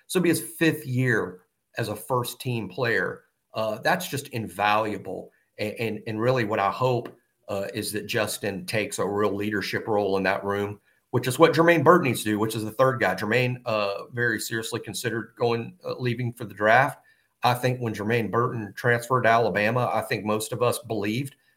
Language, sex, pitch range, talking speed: English, male, 110-125 Hz, 200 wpm